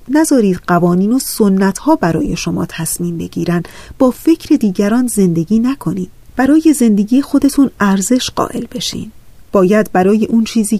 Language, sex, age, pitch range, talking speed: Persian, female, 30-49, 185-240 Hz, 135 wpm